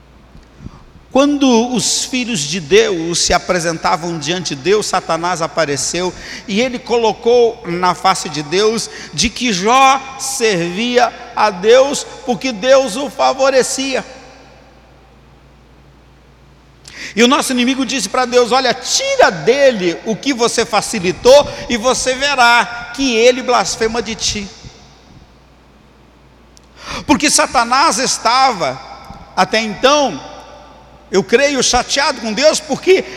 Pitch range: 185-265 Hz